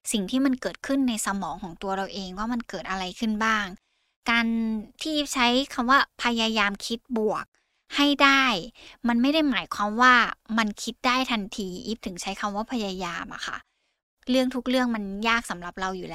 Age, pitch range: 10-29, 200-250 Hz